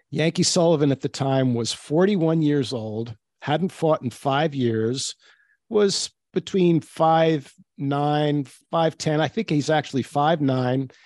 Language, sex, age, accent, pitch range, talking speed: English, male, 50-69, American, 125-155 Hz, 125 wpm